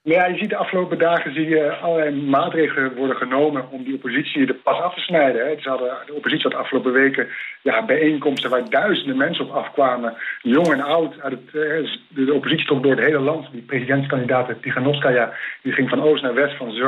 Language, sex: Dutch, male